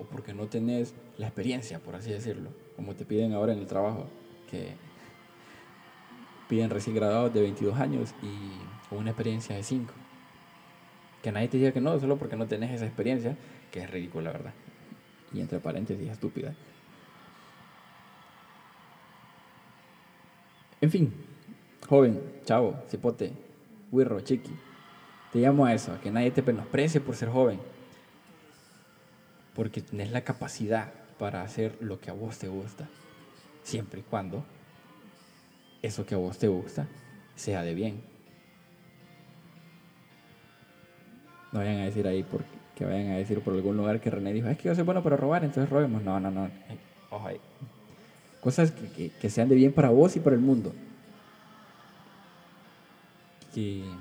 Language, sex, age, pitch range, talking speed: Spanish, male, 20-39, 105-145 Hz, 150 wpm